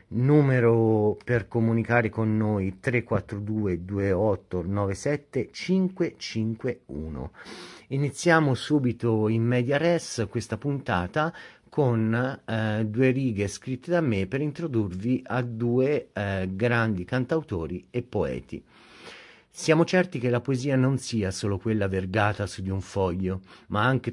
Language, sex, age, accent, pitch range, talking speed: Italian, male, 40-59, native, 105-130 Hz, 120 wpm